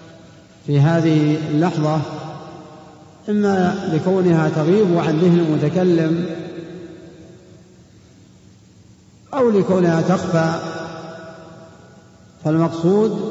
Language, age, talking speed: Arabic, 50-69, 60 wpm